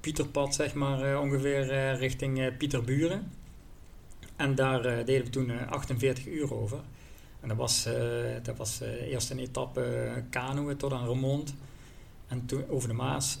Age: 40-59